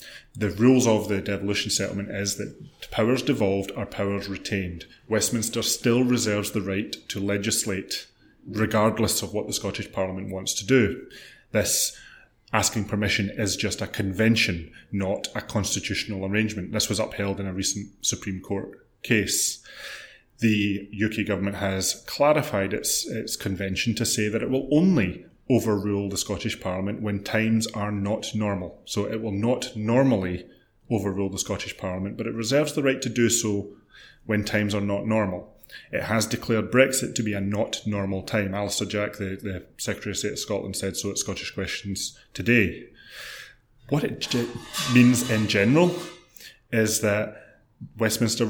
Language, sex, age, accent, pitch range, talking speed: English, male, 30-49, British, 100-115 Hz, 155 wpm